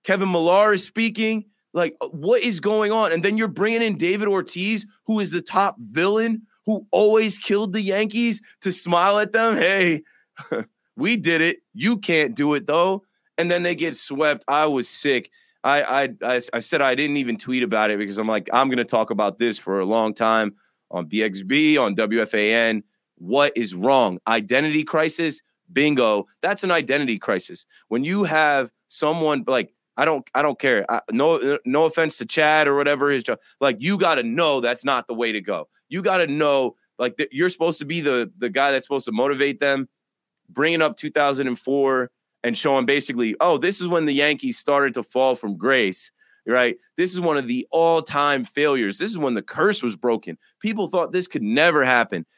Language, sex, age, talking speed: English, male, 20-39, 195 wpm